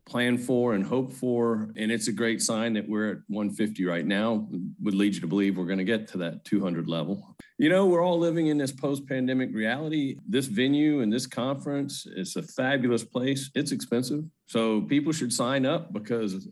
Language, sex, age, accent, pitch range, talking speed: English, male, 50-69, American, 100-130 Hz, 200 wpm